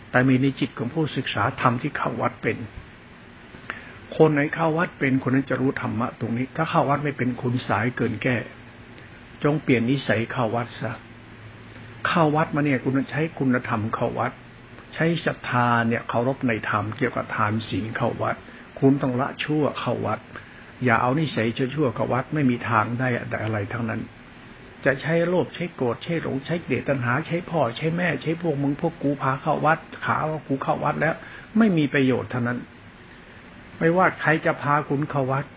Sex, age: male, 60-79